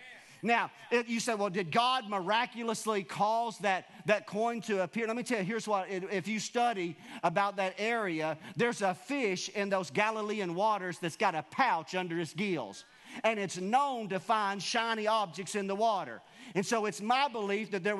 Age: 50-69